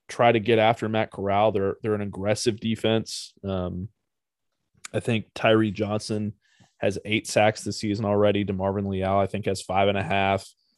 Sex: male